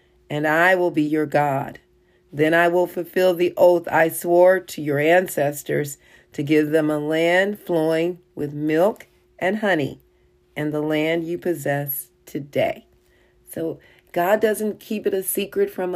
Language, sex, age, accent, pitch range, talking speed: English, female, 40-59, American, 145-180 Hz, 155 wpm